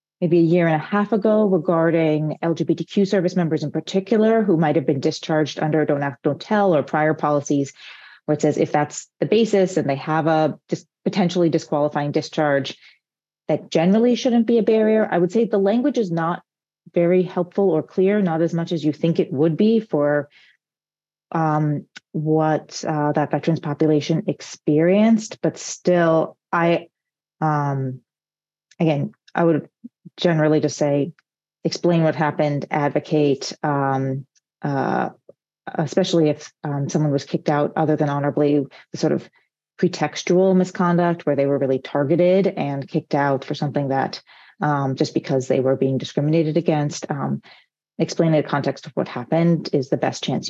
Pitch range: 150-175 Hz